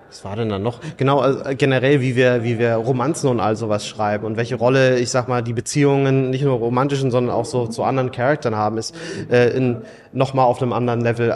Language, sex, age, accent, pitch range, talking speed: German, male, 30-49, German, 125-155 Hz, 220 wpm